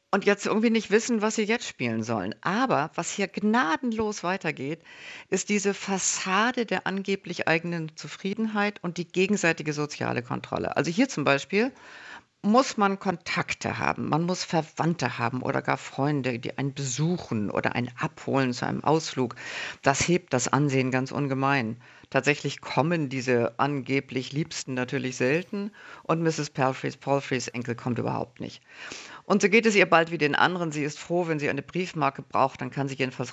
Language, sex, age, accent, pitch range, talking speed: German, female, 50-69, German, 135-195 Hz, 165 wpm